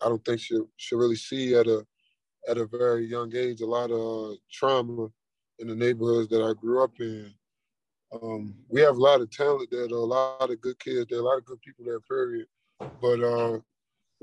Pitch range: 110-130 Hz